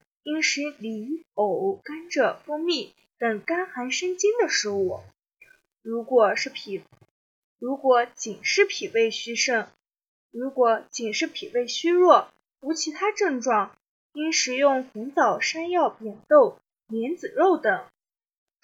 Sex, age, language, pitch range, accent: female, 10-29, Chinese, 235-340 Hz, native